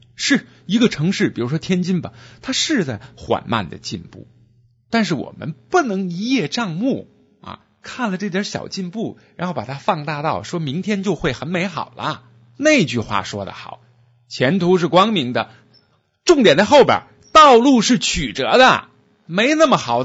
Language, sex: Chinese, male